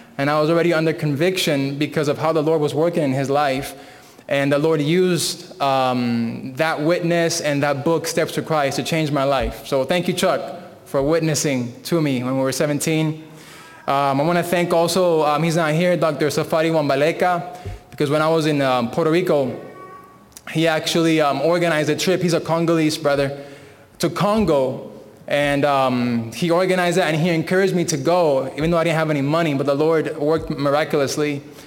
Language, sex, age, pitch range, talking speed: English, male, 20-39, 145-175 Hz, 190 wpm